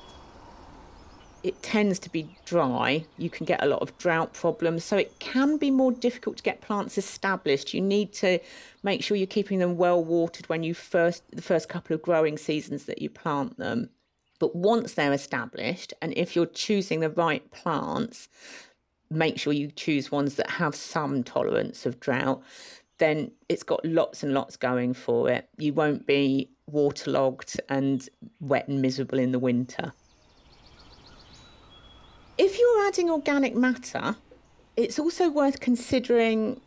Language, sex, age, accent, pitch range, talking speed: English, female, 50-69, British, 160-225 Hz, 160 wpm